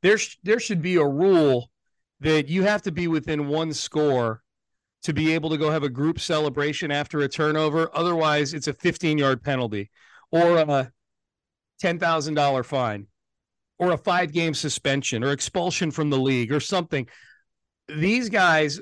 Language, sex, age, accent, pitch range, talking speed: English, male, 40-59, American, 145-190 Hz, 155 wpm